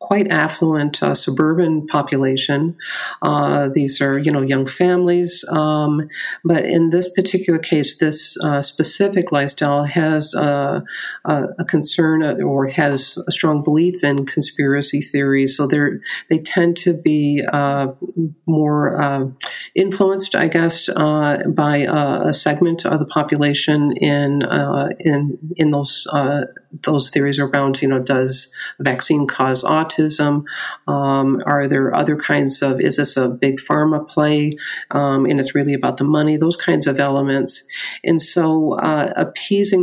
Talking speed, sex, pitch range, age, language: 145 wpm, female, 140-160 Hz, 50-69, English